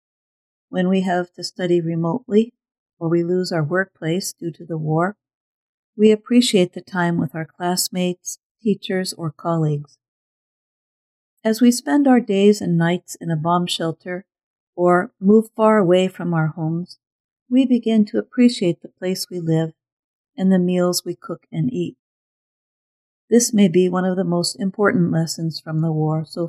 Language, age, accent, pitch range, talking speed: English, 50-69, American, 170-215 Hz, 160 wpm